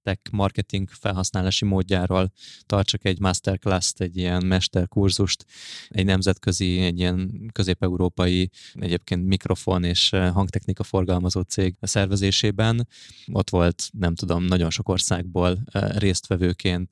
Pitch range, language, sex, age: 90-100 Hz, Hungarian, male, 20-39